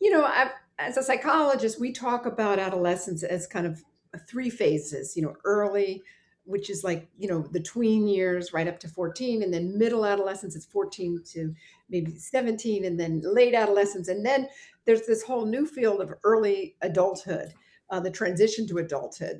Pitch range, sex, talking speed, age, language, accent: 170-245 Hz, female, 180 wpm, 50-69, English, American